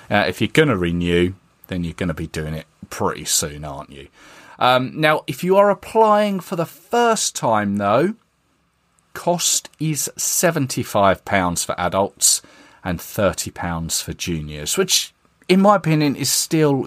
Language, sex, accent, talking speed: English, male, British, 155 wpm